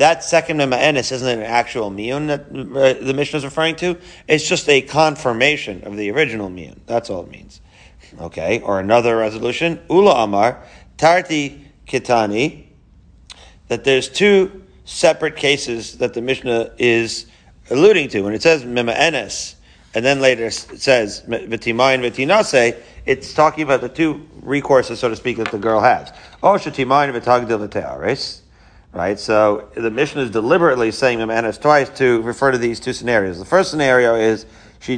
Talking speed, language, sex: 160 wpm, English, male